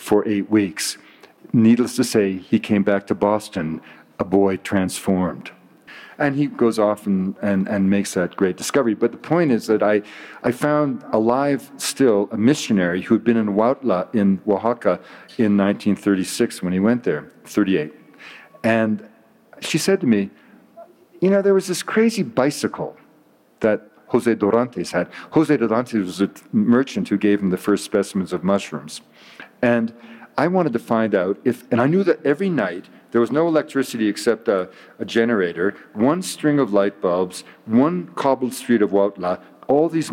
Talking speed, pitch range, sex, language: 170 wpm, 100-135 Hz, male, Spanish